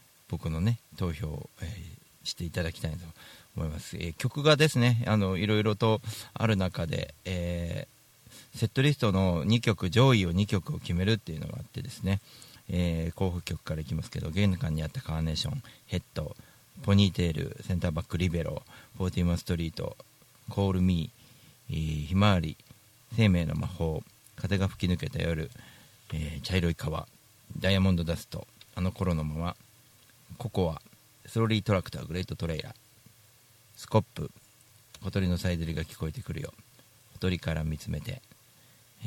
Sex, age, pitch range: male, 40-59, 90-115 Hz